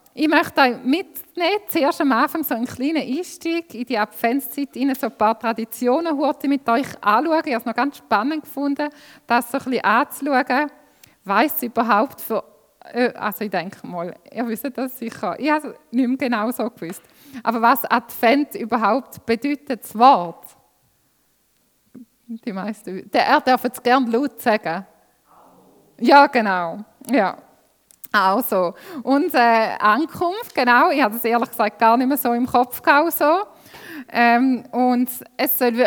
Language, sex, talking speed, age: German, female, 155 wpm, 20-39